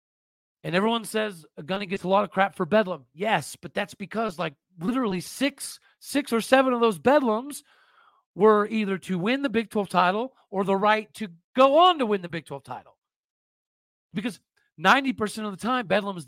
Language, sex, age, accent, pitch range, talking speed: English, male, 40-59, American, 180-225 Hz, 190 wpm